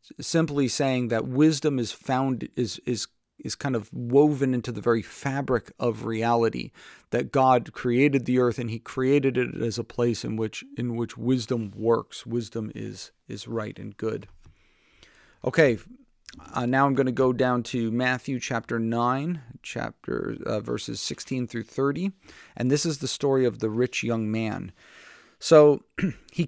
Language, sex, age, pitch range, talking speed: English, male, 40-59, 115-140 Hz, 165 wpm